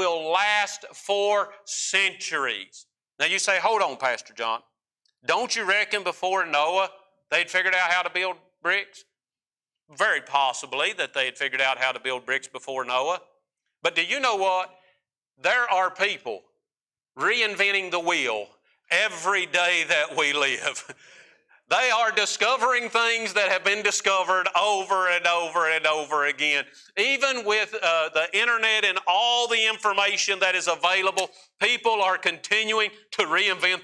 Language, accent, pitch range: English, American, 175-215 Hz